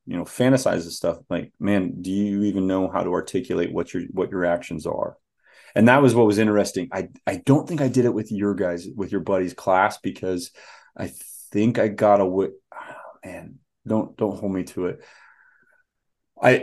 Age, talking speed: 30-49, 200 wpm